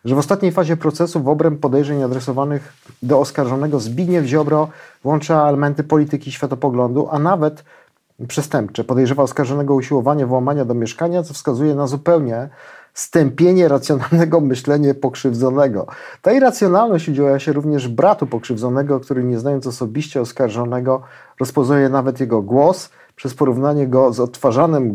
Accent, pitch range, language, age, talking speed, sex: native, 125-155 Hz, Polish, 40-59, 130 wpm, male